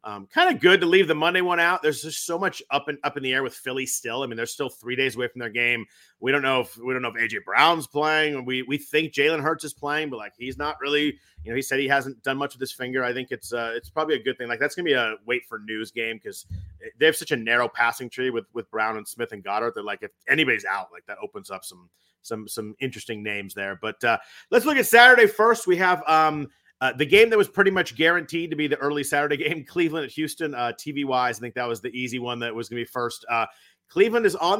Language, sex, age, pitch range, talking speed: English, male, 30-49, 120-150 Hz, 280 wpm